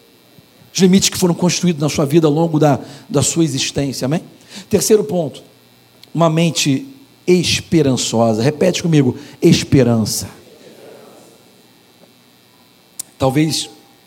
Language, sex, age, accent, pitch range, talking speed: Portuguese, male, 50-69, Brazilian, 130-180 Hz, 100 wpm